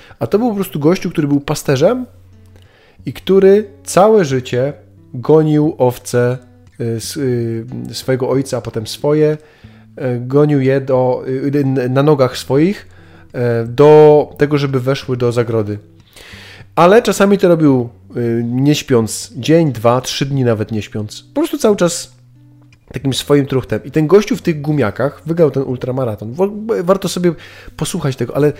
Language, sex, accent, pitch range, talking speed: Polish, male, native, 115-150 Hz, 135 wpm